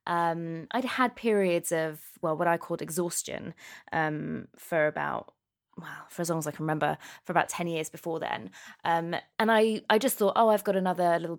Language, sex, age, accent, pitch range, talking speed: English, female, 20-39, British, 155-195 Hz, 200 wpm